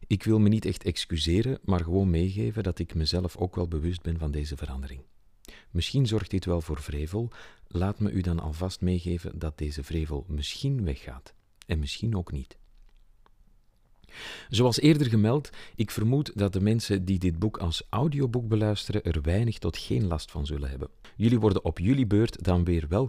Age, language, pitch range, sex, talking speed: 40-59, Dutch, 80-105 Hz, male, 180 wpm